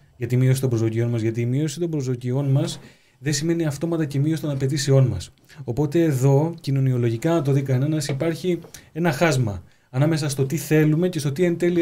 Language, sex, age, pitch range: Greek, male, 30-49, 130-175 Hz